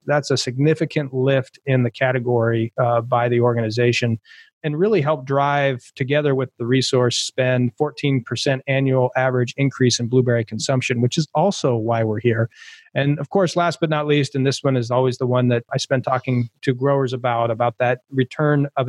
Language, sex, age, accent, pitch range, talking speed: English, male, 30-49, American, 125-145 Hz, 185 wpm